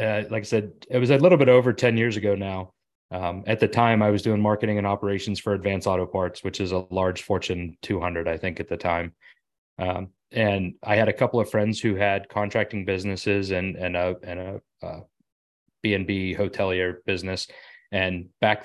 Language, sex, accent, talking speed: English, male, American, 200 wpm